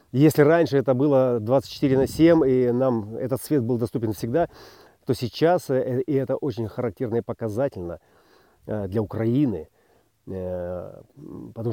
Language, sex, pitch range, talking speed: Russian, male, 110-145 Hz, 130 wpm